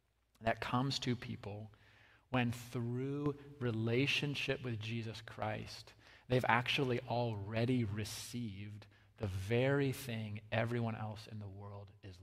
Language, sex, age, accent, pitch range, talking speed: English, male, 30-49, American, 105-125 Hz, 115 wpm